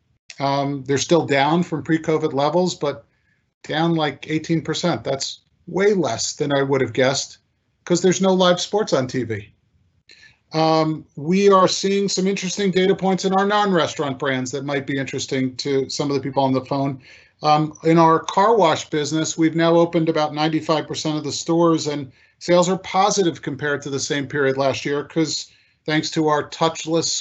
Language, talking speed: English, 180 wpm